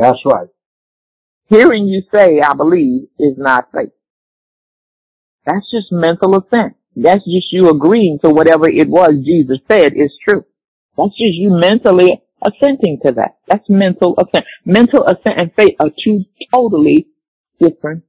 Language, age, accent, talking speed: English, 50-69, American, 145 wpm